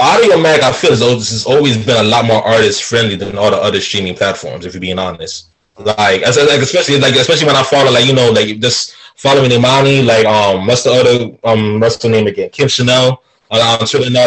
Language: English